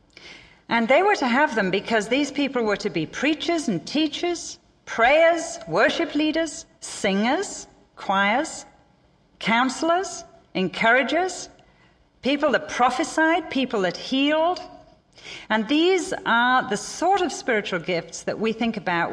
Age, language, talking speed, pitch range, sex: 40-59, English, 125 wpm, 180-280 Hz, female